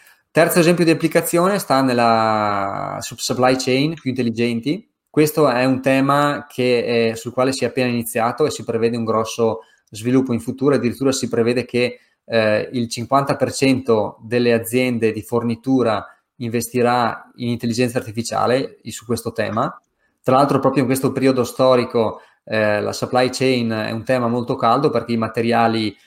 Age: 20-39